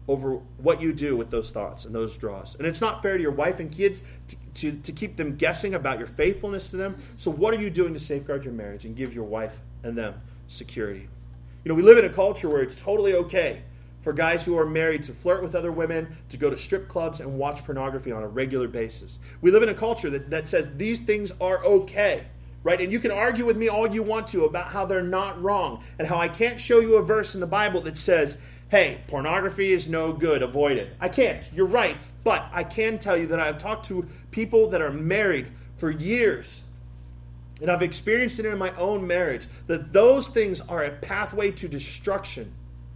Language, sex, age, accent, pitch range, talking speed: English, male, 30-49, American, 120-195 Hz, 225 wpm